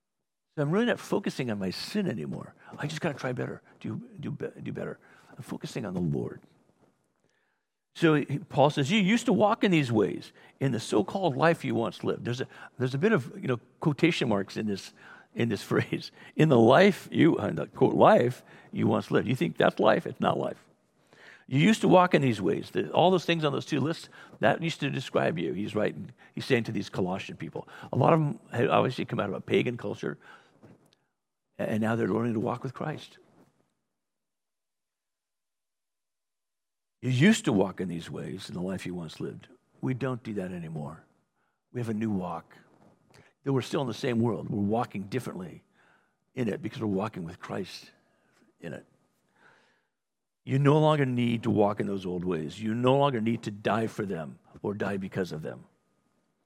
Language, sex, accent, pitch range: English, male, American, 110-165 Hz